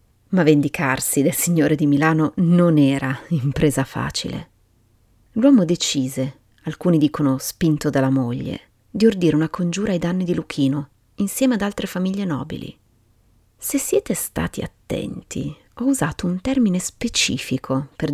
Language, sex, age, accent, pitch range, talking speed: Italian, female, 30-49, native, 130-175 Hz, 130 wpm